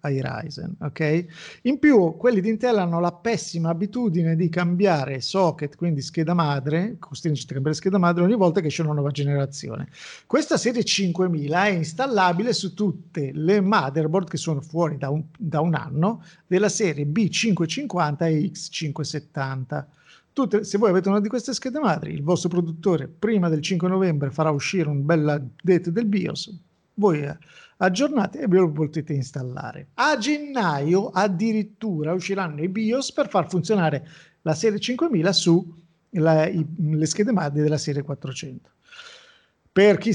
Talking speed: 155 wpm